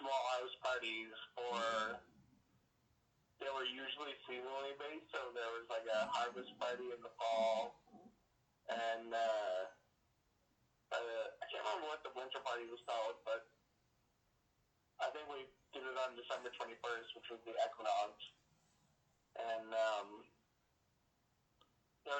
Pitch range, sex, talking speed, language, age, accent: 115-130 Hz, male, 125 wpm, English, 30-49, American